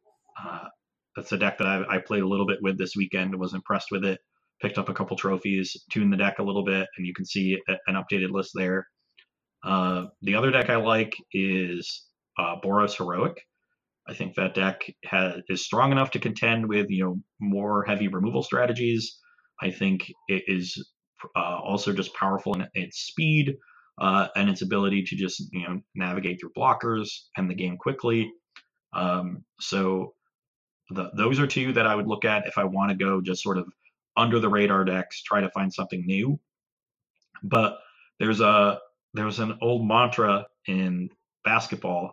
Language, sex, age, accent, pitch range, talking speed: English, male, 30-49, American, 95-110 Hz, 180 wpm